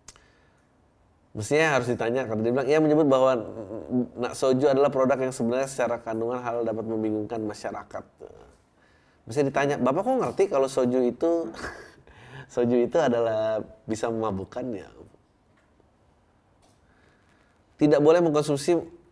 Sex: male